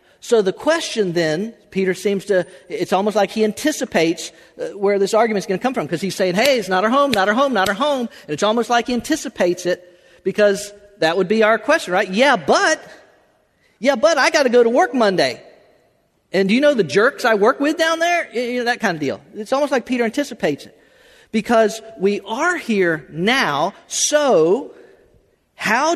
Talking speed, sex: 205 wpm, male